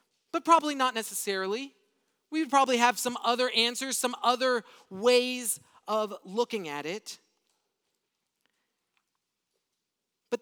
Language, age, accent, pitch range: English, 40-59, American, 220-290 Hz